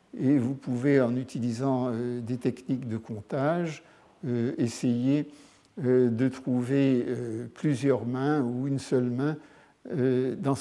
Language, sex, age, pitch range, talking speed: French, male, 60-79, 125-150 Hz, 105 wpm